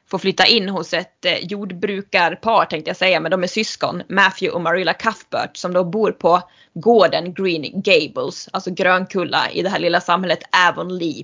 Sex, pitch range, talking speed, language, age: female, 180-220 Hz, 170 wpm, Swedish, 20-39